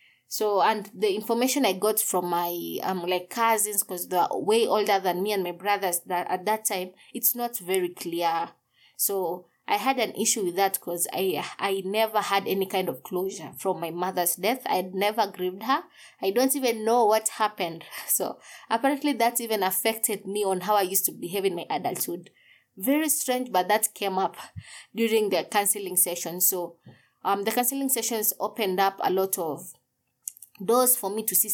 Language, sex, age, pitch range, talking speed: English, female, 20-39, 185-230 Hz, 190 wpm